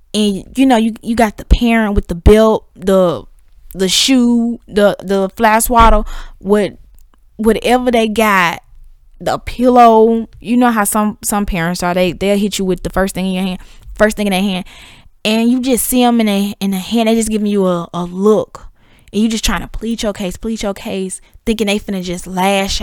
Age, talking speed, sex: 10-29, 215 wpm, female